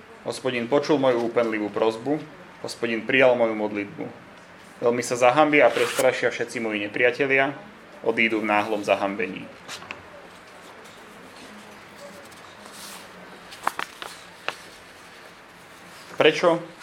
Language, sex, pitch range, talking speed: Slovak, male, 110-145 Hz, 80 wpm